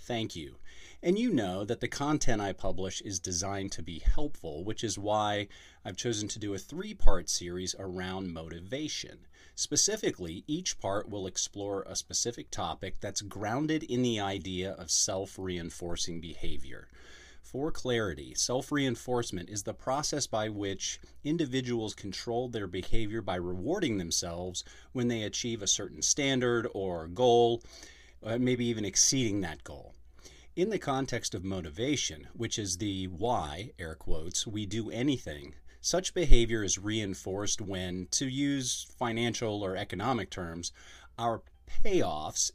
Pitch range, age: 90-120 Hz, 30-49